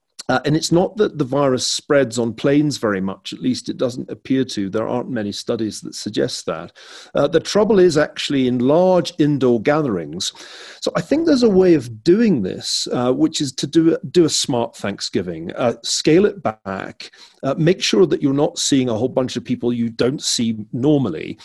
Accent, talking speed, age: British, 200 wpm, 40-59